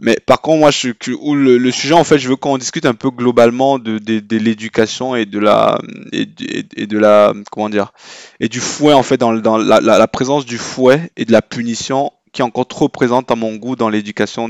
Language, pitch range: French, 110-130 Hz